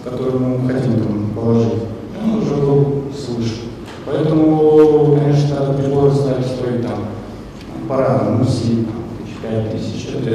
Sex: male